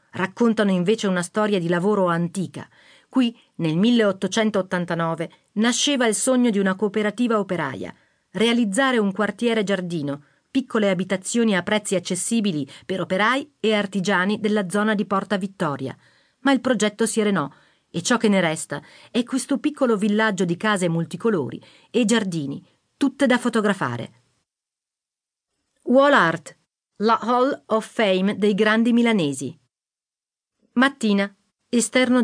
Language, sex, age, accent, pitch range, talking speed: Italian, female, 40-59, native, 175-230 Hz, 125 wpm